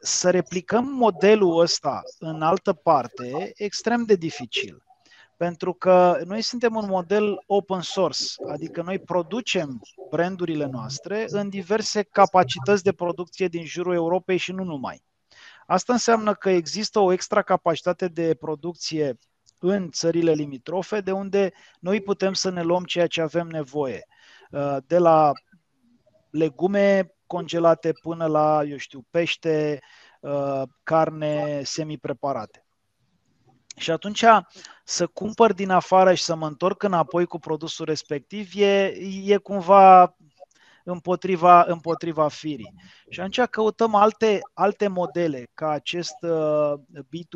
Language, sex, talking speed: Romanian, male, 125 wpm